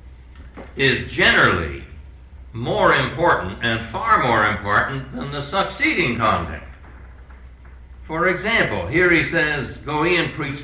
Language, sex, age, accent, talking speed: English, male, 60-79, American, 120 wpm